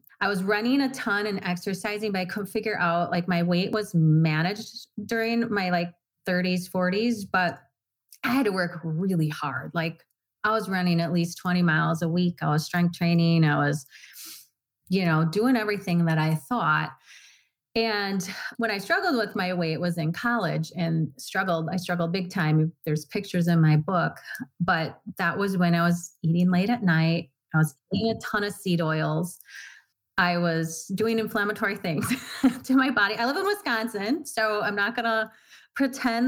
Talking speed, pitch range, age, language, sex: 180 wpm, 170-210 Hz, 30-49, English, female